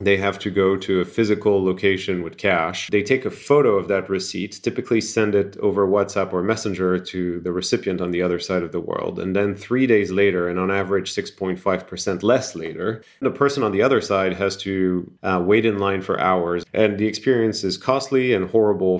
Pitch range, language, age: 90-110 Hz, English, 30-49